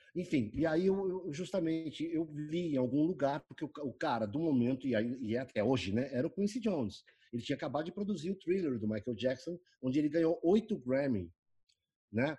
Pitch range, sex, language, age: 120-175 Hz, male, Portuguese, 50-69